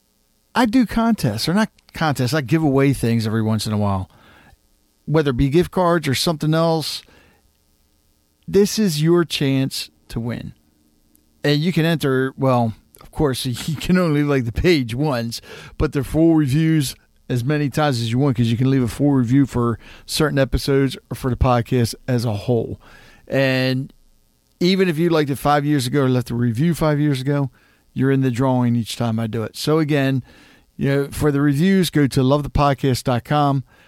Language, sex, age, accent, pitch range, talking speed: English, male, 40-59, American, 115-150 Hz, 190 wpm